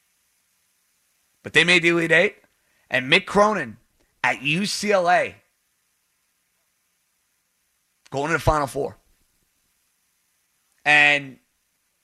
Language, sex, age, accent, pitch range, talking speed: English, male, 30-49, American, 140-185 Hz, 85 wpm